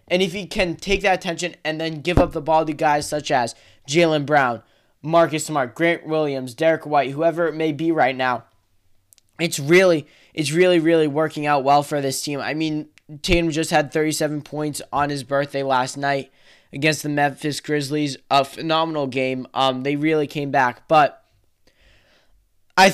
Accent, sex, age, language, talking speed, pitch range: American, male, 10-29, English, 180 wpm, 135-160 Hz